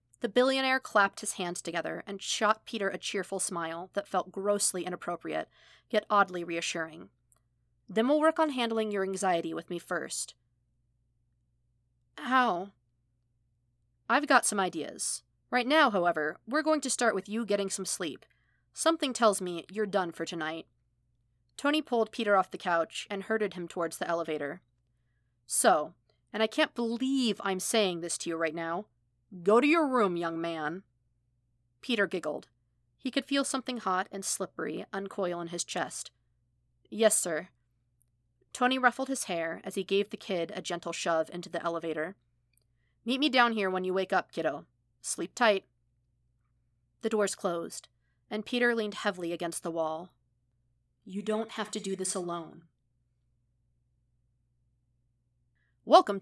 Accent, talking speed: American, 150 wpm